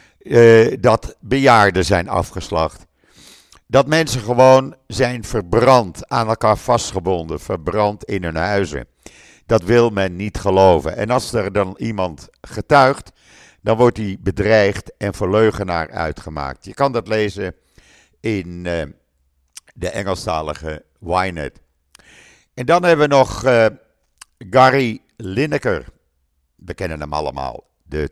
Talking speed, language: 120 wpm, Dutch